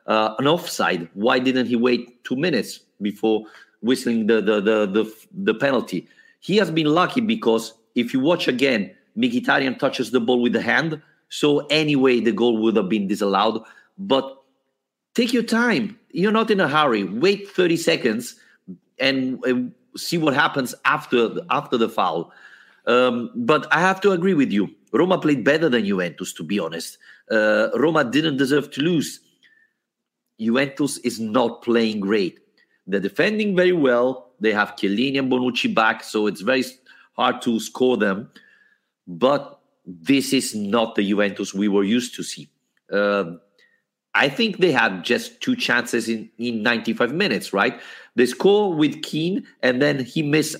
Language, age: English, 40-59